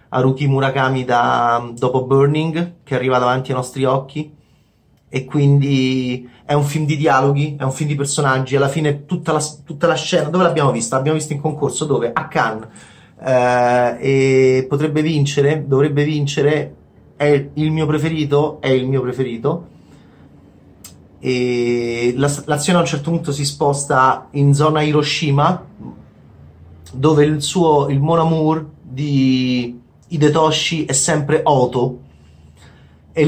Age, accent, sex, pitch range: 30-49, native, male, 130-160 Hz